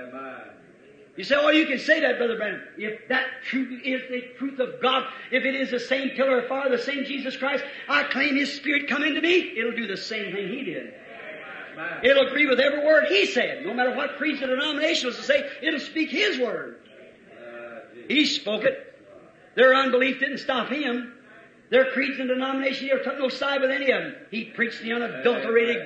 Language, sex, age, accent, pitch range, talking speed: English, male, 50-69, American, 220-270 Hz, 195 wpm